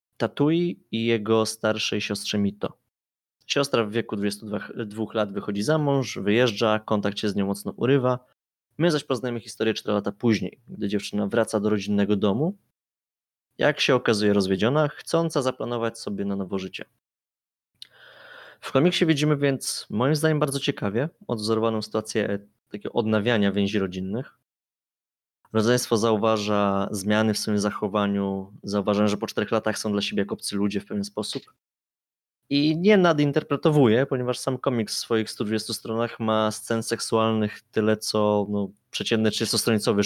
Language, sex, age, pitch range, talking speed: Polish, male, 20-39, 105-120 Hz, 140 wpm